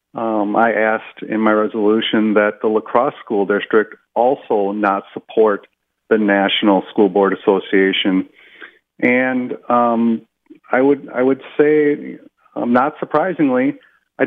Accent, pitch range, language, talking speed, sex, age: American, 110-125 Hz, English, 125 wpm, male, 40-59